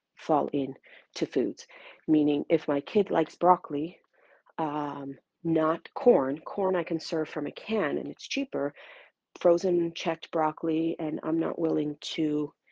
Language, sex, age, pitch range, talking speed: English, female, 40-59, 150-175 Hz, 145 wpm